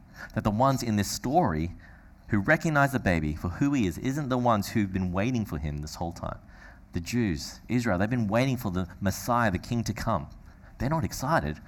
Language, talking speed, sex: English, 210 wpm, male